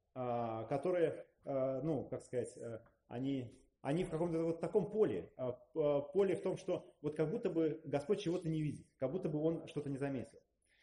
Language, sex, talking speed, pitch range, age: Russian, male, 165 wpm, 130-175 Hz, 30-49